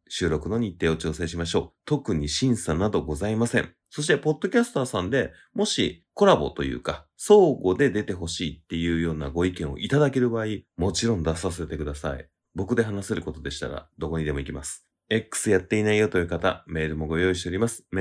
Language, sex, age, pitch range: Japanese, male, 30-49, 85-125 Hz